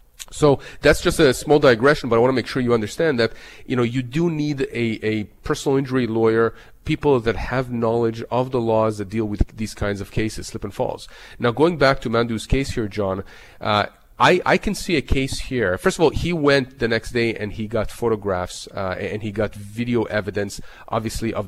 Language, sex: English, male